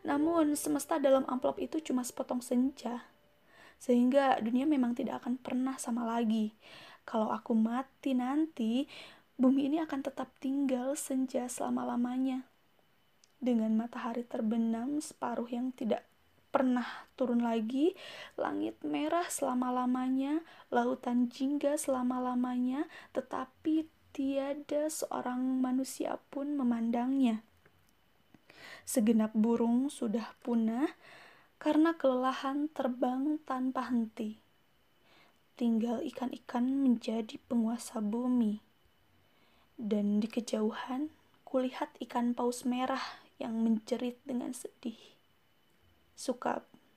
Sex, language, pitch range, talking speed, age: female, Indonesian, 240-275 Hz, 95 wpm, 20-39